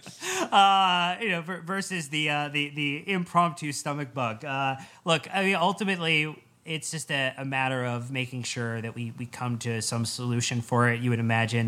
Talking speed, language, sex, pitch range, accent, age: 185 wpm, English, male, 120-150 Hz, American, 20-39